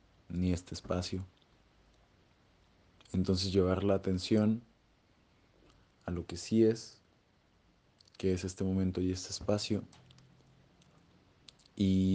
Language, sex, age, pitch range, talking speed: Spanish, male, 20-39, 95-110 Hz, 100 wpm